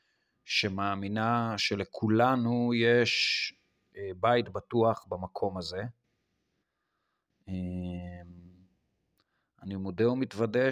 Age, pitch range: 30-49, 95-115 Hz